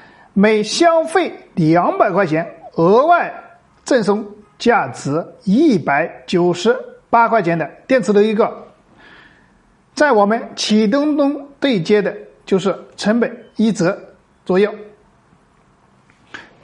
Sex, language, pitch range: male, Chinese, 190-285 Hz